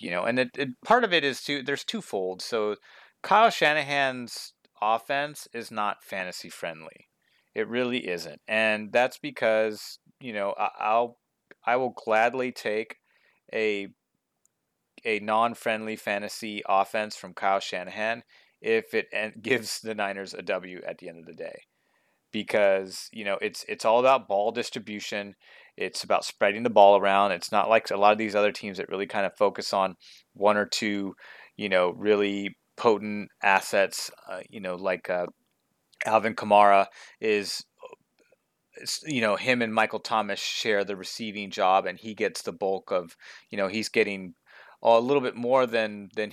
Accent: American